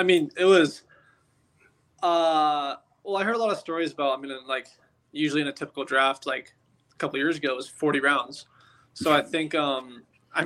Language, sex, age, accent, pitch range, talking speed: English, male, 20-39, American, 135-155 Hz, 190 wpm